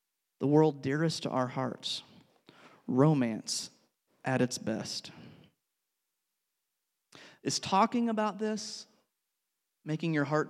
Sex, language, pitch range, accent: male, English, 135-165 Hz, American